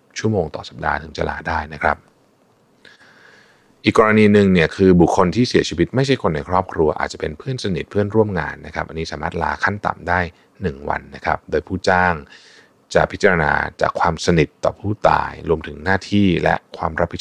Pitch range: 80-95 Hz